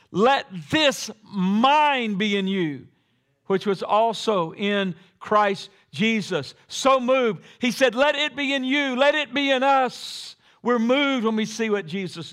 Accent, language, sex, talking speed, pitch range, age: American, English, male, 160 wpm, 165-230 Hz, 50-69